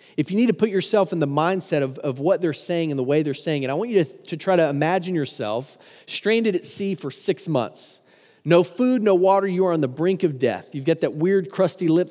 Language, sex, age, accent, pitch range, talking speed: English, male, 30-49, American, 140-180 Hz, 260 wpm